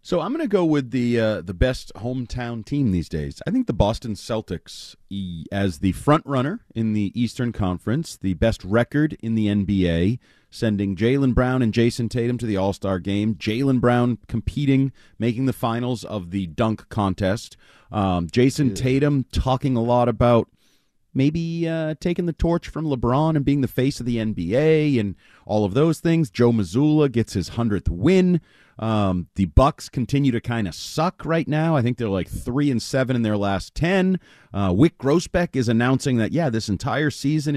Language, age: English, 30-49